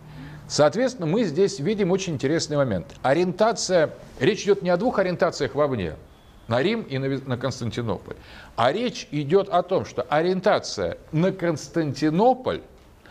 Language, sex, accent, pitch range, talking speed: Russian, male, native, 130-195 Hz, 135 wpm